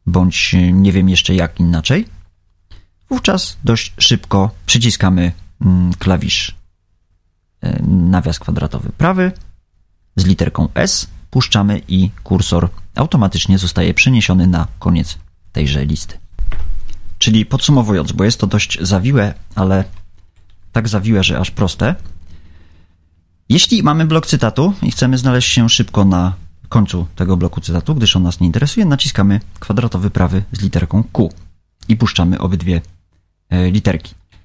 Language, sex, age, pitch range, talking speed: Polish, male, 30-49, 85-105 Hz, 120 wpm